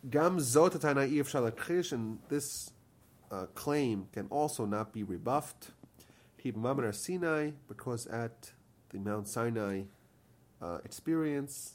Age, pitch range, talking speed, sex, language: 30-49, 105-135 Hz, 80 wpm, male, English